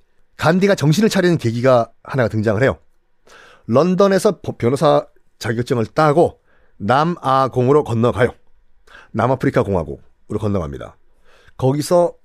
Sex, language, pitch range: male, Korean, 115-190 Hz